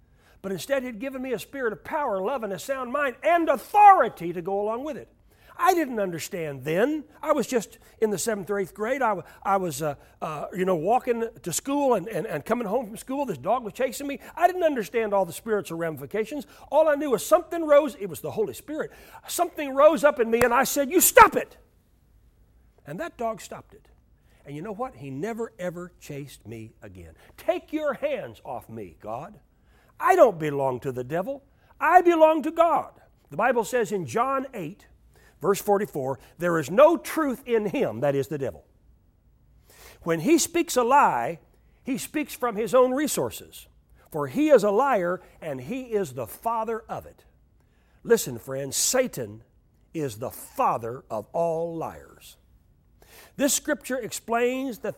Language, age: English, 60-79